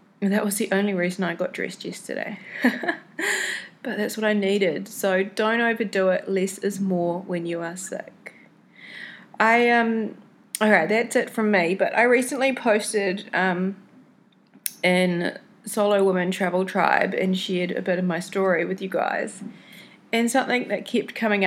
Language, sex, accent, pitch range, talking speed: English, female, Australian, 190-225 Hz, 160 wpm